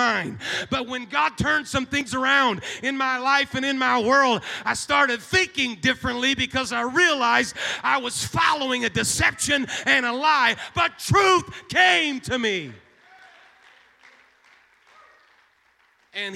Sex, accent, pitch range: male, American, 245-290 Hz